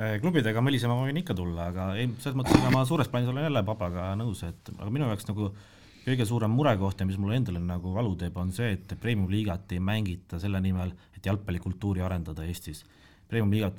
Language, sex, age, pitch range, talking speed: English, male, 30-49, 90-110 Hz, 200 wpm